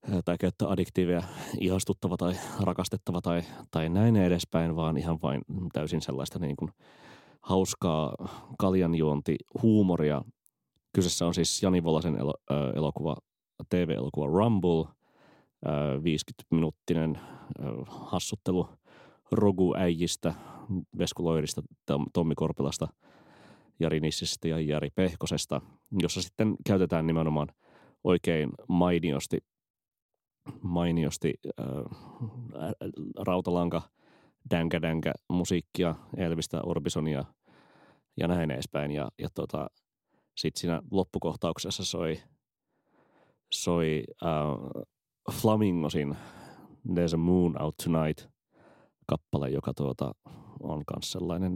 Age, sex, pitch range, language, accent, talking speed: 30-49, male, 80-90 Hz, Finnish, native, 90 wpm